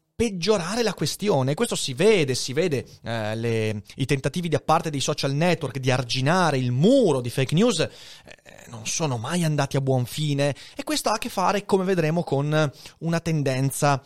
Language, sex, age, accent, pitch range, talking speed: Italian, male, 30-49, native, 130-195 Hz, 180 wpm